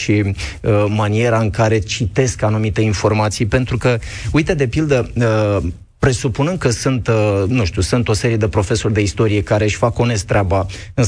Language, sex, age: Romanian, male, 30-49